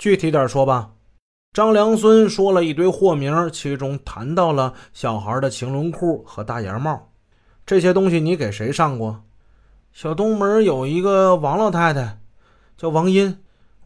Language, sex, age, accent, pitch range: Chinese, male, 30-49, native, 115-170 Hz